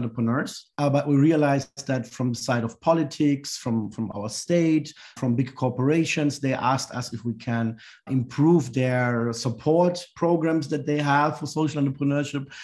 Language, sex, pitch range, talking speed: English, male, 125-150 Hz, 160 wpm